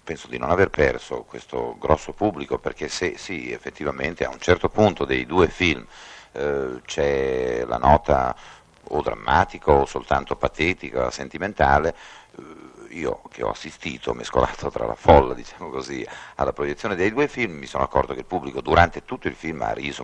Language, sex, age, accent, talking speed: Italian, male, 50-69, native, 170 wpm